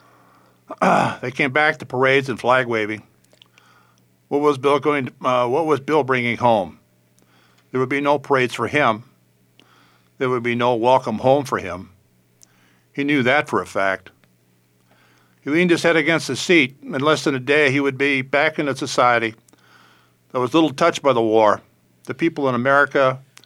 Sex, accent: male, American